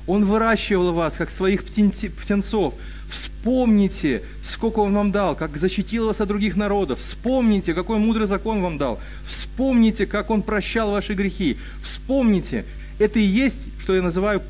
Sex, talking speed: male, 150 wpm